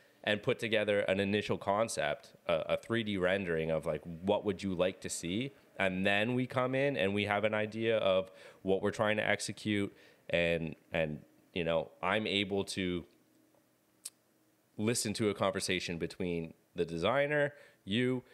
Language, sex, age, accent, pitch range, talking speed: English, male, 30-49, American, 95-115 Hz, 155 wpm